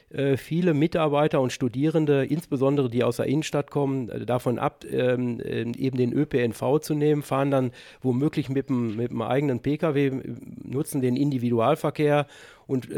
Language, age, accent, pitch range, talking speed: English, 50-69, German, 120-145 Hz, 135 wpm